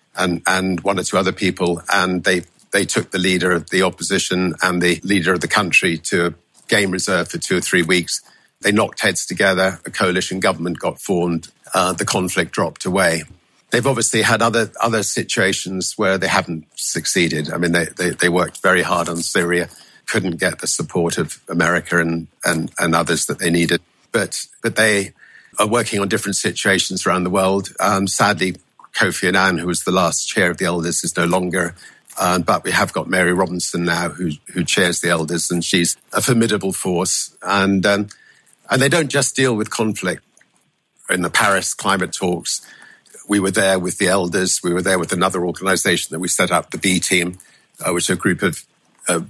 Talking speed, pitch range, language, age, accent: 200 wpm, 85-100 Hz, English, 50-69, British